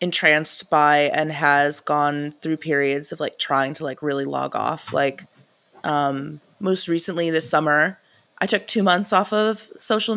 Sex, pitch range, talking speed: female, 150-180 Hz, 165 wpm